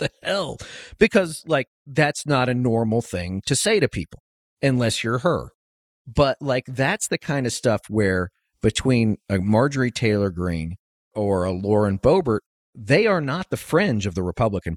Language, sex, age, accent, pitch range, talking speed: English, male, 40-59, American, 95-125 Hz, 165 wpm